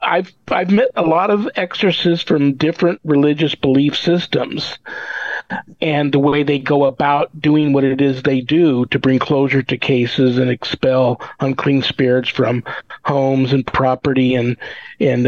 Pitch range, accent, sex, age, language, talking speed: 135-160 Hz, American, male, 50-69, English, 155 wpm